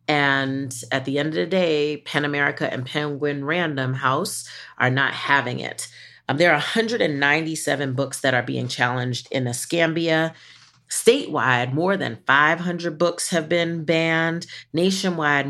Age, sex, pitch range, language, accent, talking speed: 30-49, female, 130-165 Hz, English, American, 145 wpm